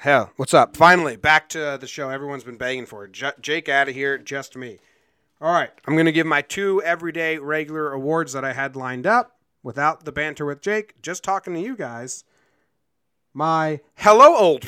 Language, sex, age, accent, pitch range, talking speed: English, male, 30-49, American, 145-195 Hz, 195 wpm